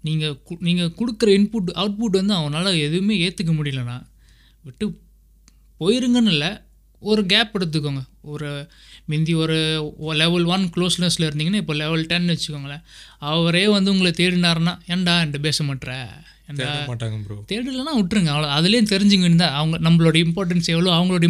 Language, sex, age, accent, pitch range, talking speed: Tamil, male, 20-39, native, 150-185 Hz, 140 wpm